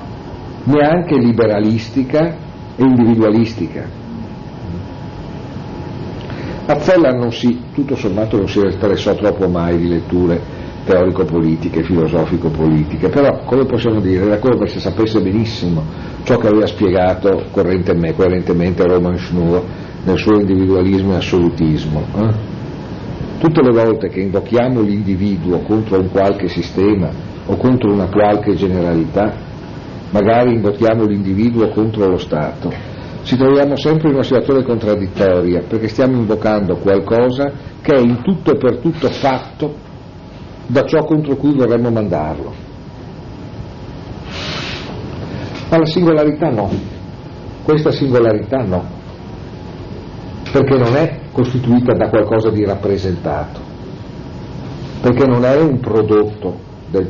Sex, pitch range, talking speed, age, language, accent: male, 90-125 Hz, 115 wpm, 50-69, Italian, native